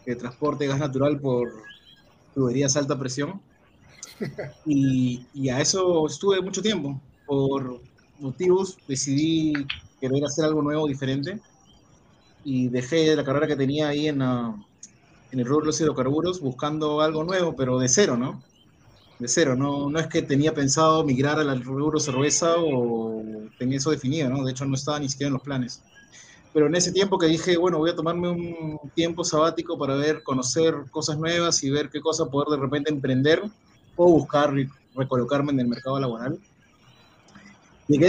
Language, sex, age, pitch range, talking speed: Spanish, male, 30-49, 130-160 Hz, 165 wpm